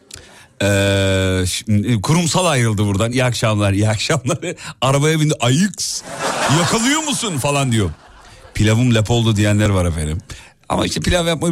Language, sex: Turkish, male